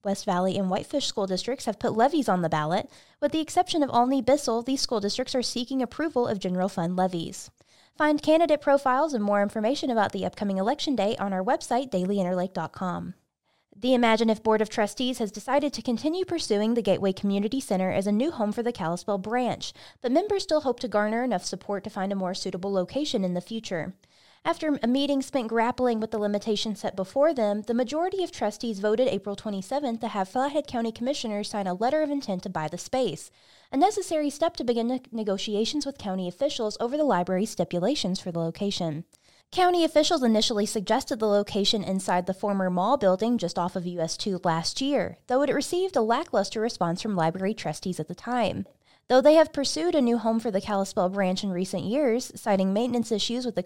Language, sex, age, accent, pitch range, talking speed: English, female, 20-39, American, 190-255 Hz, 200 wpm